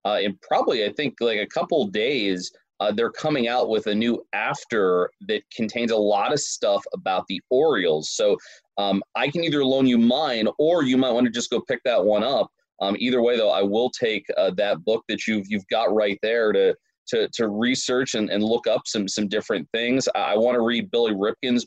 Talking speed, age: 225 wpm, 30-49